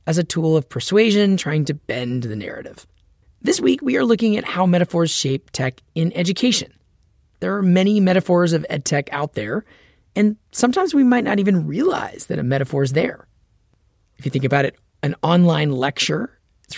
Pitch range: 135-200 Hz